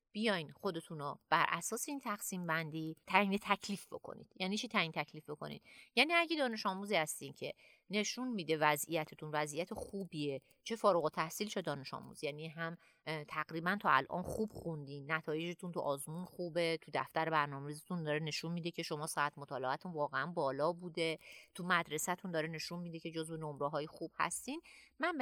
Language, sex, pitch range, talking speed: Persian, female, 160-220 Hz, 170 wpm